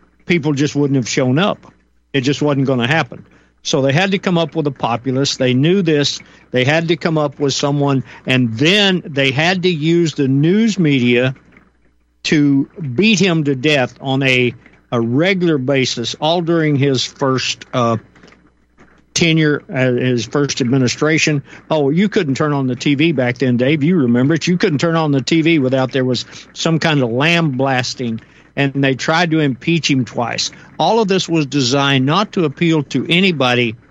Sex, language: male, English